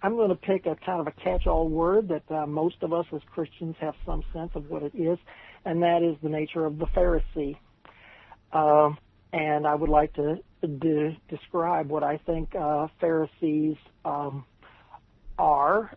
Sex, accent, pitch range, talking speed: male, American, 150-170 Hz, 180 wpm